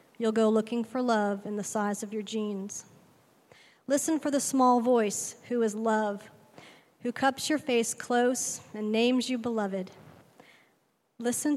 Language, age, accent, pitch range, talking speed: English, 40-59, American, 215-245 Hz, 150 wpm